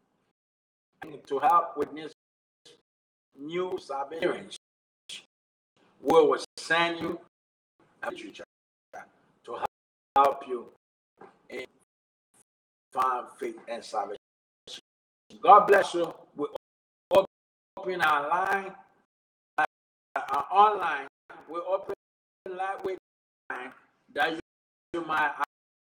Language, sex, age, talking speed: English, male, 50-69, 85 wpm